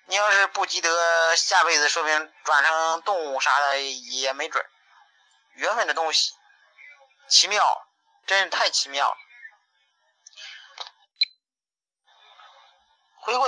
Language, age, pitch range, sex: Chinese, 40-59, 160-245 Hz, male